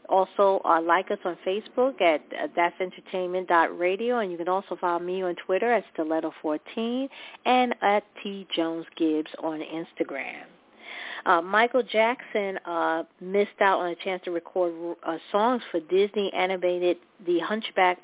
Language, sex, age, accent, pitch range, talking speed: English, female, 40-59, American, 175-215 Hz, 145 wpm